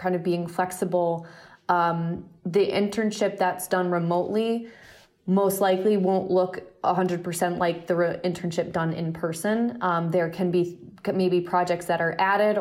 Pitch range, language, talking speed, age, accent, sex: 175-195 Hz, English, 150 wpm, 20-39, American, female